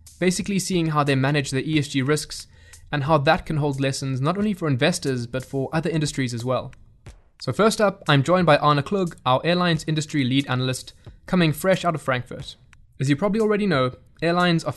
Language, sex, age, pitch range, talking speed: English, male, 20-39, 125-160 Hz, 200 wpm